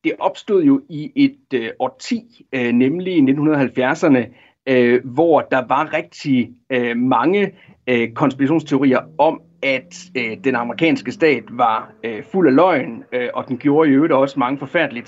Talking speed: 125 wpm